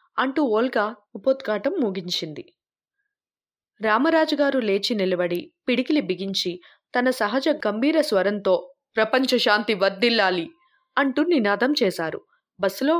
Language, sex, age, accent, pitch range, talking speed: Telugu, female, 20-39, native, 200-285 Hz, 95 wpm